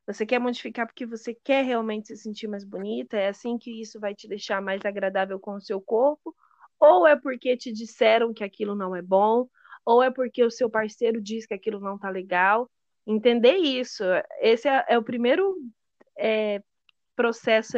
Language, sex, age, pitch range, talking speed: Portuguese, female, 20-39, 215-270 Hz, 180 wpm